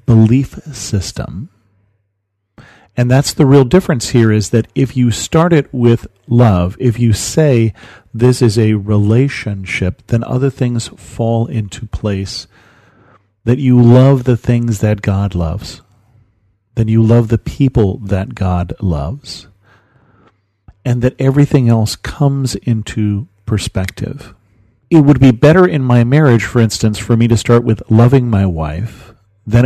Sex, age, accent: male, 40-59, American